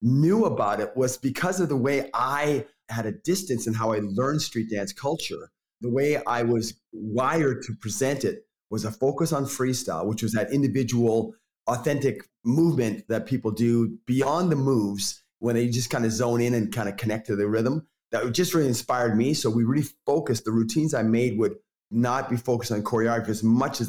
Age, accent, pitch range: 30-49, American, 115-140 Hz